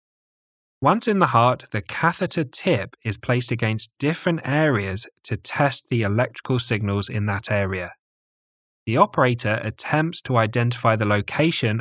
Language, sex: English, male